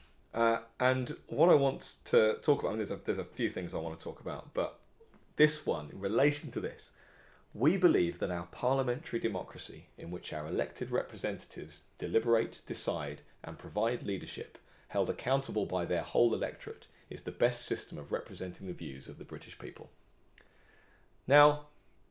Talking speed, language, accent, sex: 170 wpm, English, British, male